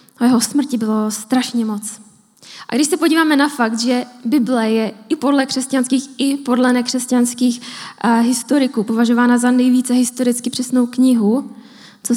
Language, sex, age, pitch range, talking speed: Czech, female, 10-29, 220-250 Hz, 145 wpm